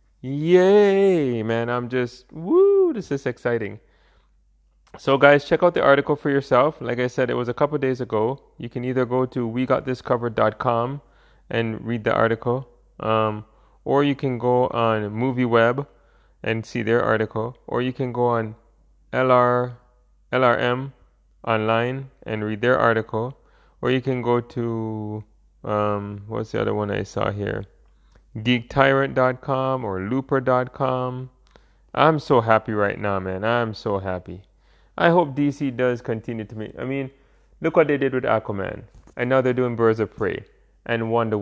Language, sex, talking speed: English, male, 165 wpm